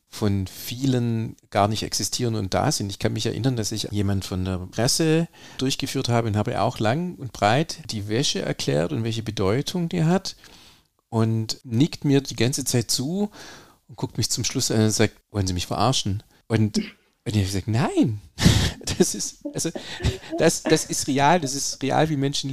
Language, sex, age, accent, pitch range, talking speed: German, male, 40-59, German, 110-140 Hz, 185 wpm